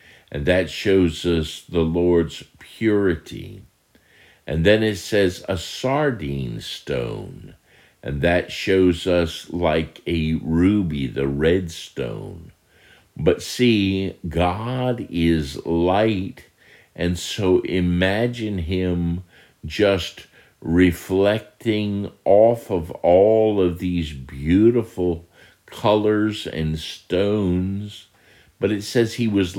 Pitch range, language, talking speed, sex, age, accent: 80-105 Hz, English, 100 wpm, male, 50-69, American